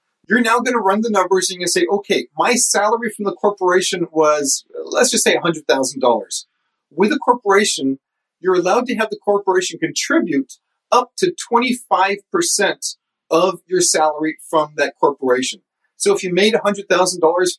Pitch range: 165-220 Hz